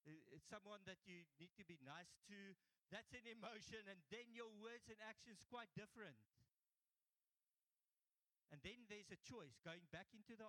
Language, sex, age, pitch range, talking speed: English, male, 50-69, 155-215 Hz, 165 wpm